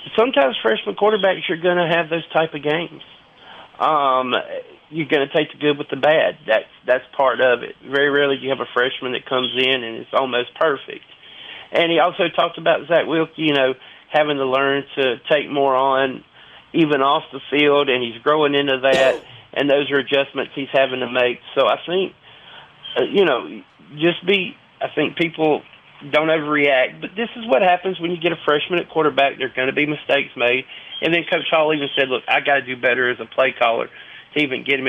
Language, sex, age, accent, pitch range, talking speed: English, male, 40-59, American, 130-170 Hz, 210 wpm